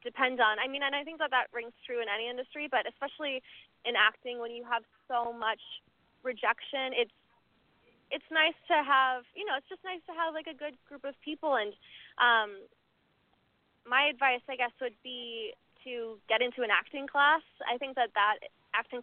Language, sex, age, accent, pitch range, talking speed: English, female, 20-39, American, 225-265 Hz, 190 wpm